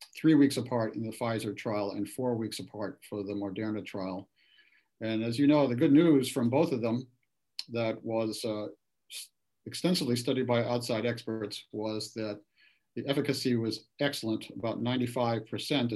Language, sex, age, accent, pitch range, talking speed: English, male, 50-69, American, 110-130 Hz, 160 wpm